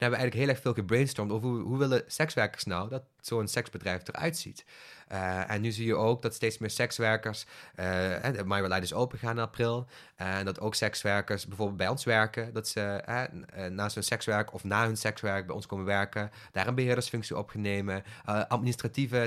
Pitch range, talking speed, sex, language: 100-120 Hz, 210 wpm, male, English